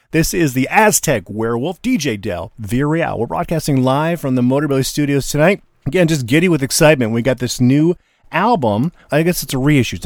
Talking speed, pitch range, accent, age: 190 wpm, 110-140 Hz, American, 40-59